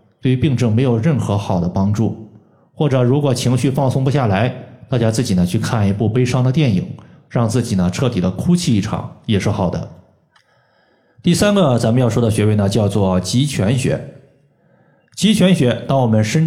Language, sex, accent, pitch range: Chinese, male, native, 100-130 Hz